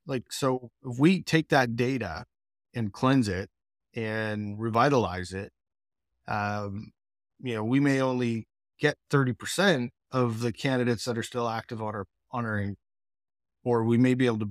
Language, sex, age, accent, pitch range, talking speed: English, male, 30-49, American, 110-125 Hz, 155 wpm